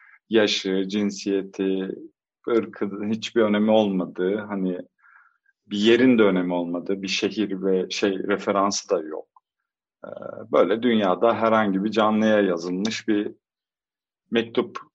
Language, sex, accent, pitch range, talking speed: Turkish, male, native, 95-125 Hz, 110 wpm